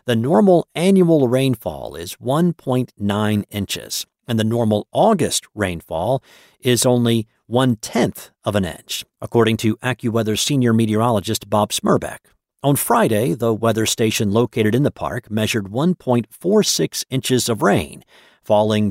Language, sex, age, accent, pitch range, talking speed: English, male, 50-69, American, 105-135 Hz, 125 wpm